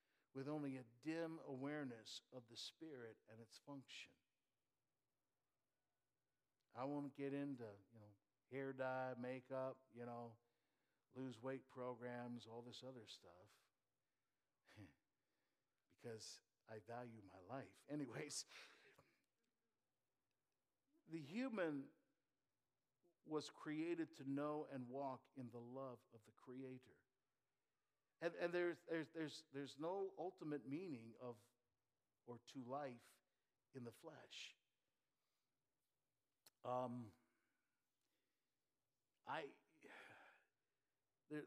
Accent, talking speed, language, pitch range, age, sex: American, 100 wpm, English, 120-150 Hz, 50-69, male